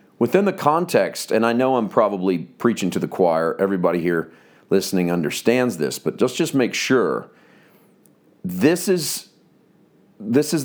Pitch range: 100-145 Hz